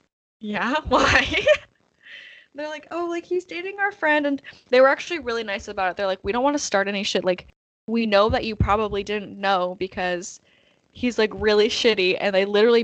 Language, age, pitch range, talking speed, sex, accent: English, 10-29, 190-220 Hz, 200 wpm, female, American